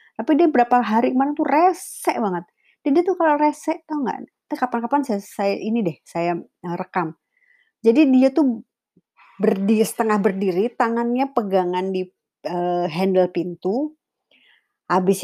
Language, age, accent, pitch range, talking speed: Indonesian, 30-49, native, 200-295 Hz, 140 wpm